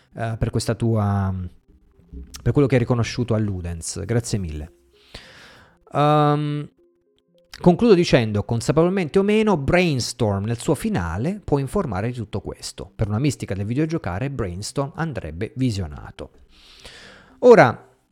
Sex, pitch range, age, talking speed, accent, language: male, 100-150 Hz, 30-49, 120 wpm, native, Italian